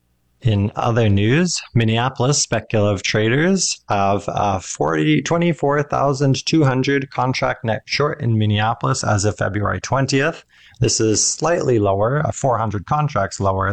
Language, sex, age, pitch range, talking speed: English, male, 20-39, 105-140 Hz, 115 wpm